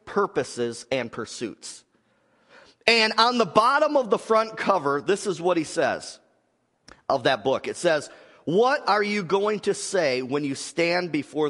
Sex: male